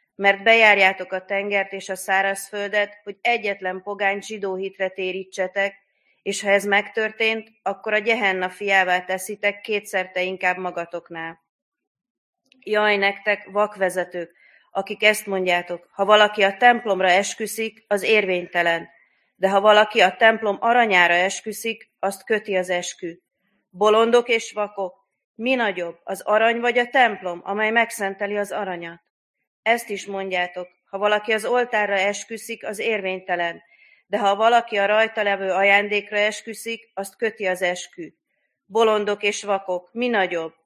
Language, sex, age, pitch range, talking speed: Hungarian, female, 30-49, 190-220 Hz, 130 wpm